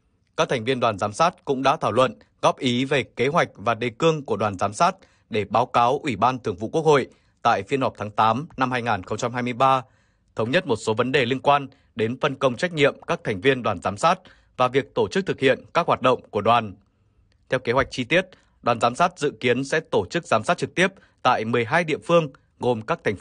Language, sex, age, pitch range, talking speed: Vietnamese, male, 20-39, 115-145 Hz, 240 wpm